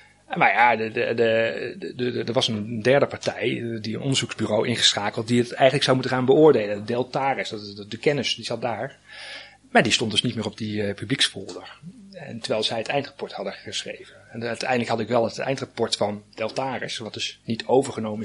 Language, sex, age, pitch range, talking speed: Dutch, male, 30-49, 115-145 Hz, 205 wpm